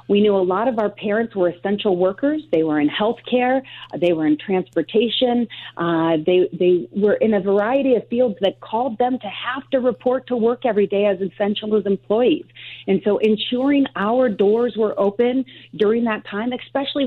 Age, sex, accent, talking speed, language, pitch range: 40-59, female, American, 185 wpm, English, 200-250 Hz